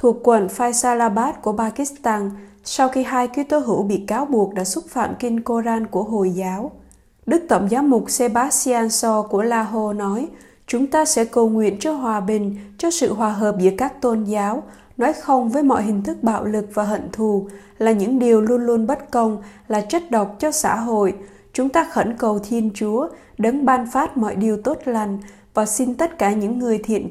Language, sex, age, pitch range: Vietnamese, female, 20-39, 205-255 Hz